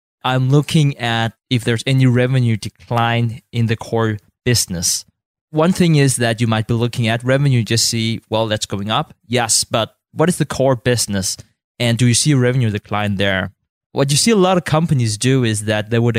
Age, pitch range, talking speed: 20-39, 110-135 Hz, 205 wpm